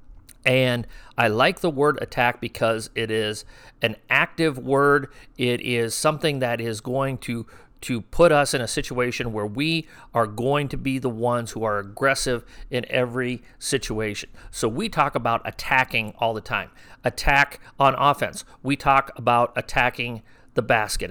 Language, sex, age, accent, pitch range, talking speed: English, male, 50-69, American, 115-140 Hz, 160 wpm